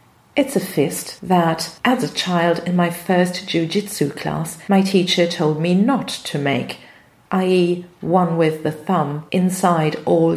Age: 50-69